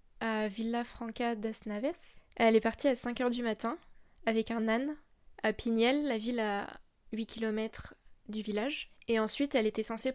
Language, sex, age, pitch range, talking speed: French, female, 20-39, 220-245 Hz, 165 wpm